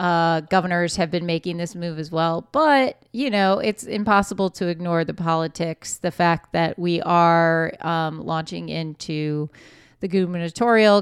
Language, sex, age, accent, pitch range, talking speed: English, female, 30-49, American, 165-200 Hz, 145 wpm